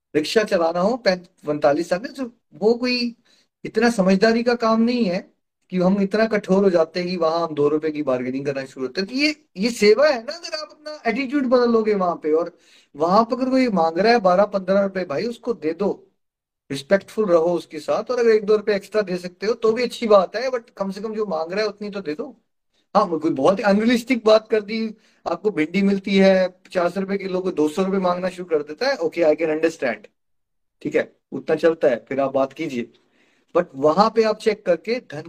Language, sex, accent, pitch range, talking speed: Hindi, male, native, 160-225 Hz, 230 wpm